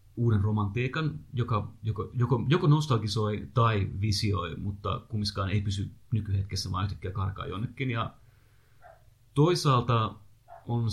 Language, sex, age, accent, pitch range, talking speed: Finnish, male, 30-49, native, 105-120 Hz, 115 wpm